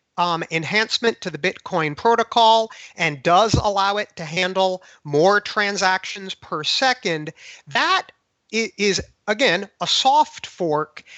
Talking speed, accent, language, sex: 120 wpm, American, English, male